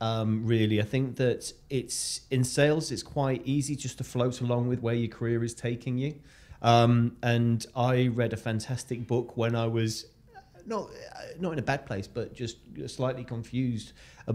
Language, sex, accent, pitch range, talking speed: English, male, British, 100-120 Hz, 180 wpm